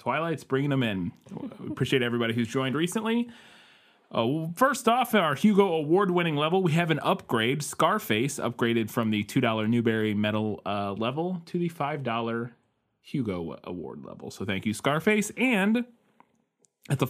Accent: American